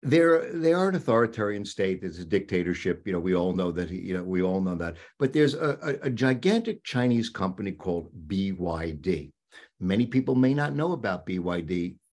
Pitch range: 90-130 Hz